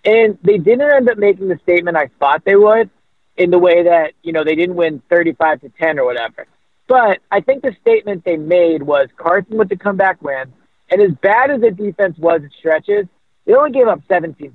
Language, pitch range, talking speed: English, 165-210 Hz, 220 wpm